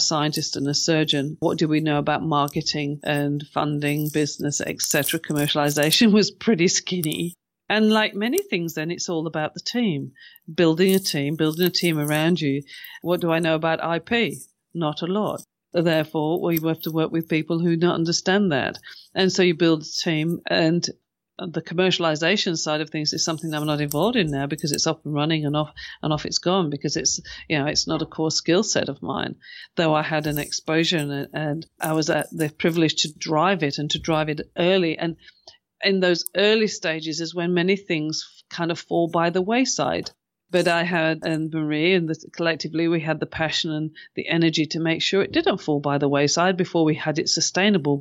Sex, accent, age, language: female, British, 50-69, English